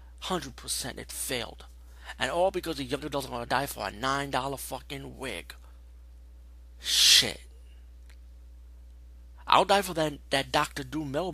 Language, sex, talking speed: English, male, 140 wpm